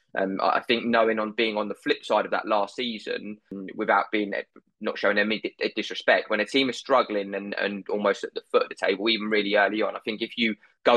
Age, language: 20-39, English